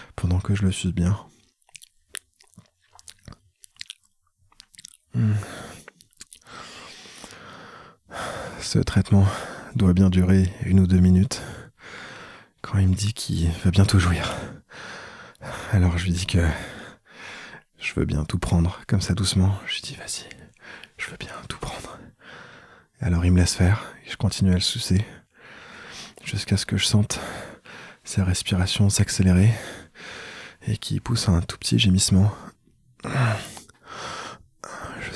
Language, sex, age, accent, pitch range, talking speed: French, male, 20-39, French, 90-105 Hz, 125 wpm